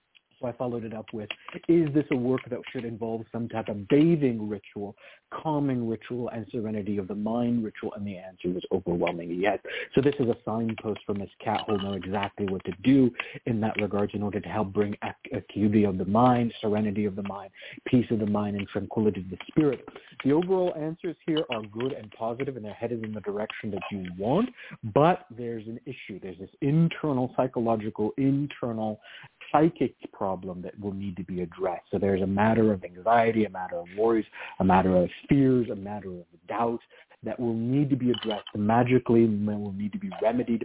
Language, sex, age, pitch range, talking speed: English, male, 50-69, 105-130 Hz, 200 wpm